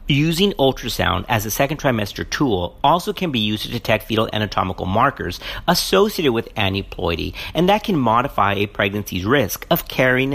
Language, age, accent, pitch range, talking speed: English, 50-69, American, 100-155 Hz, 160 wpm